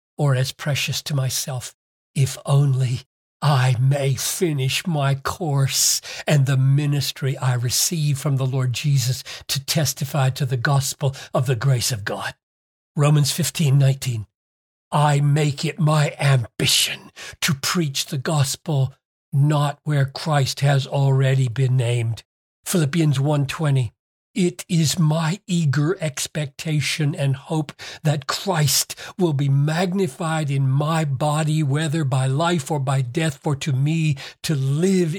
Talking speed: 135 wpm